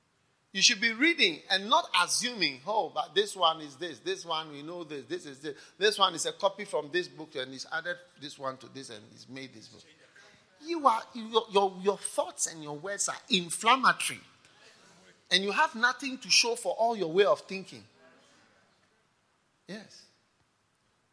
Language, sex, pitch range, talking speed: English, male, 125-195 Hz, 185 wpm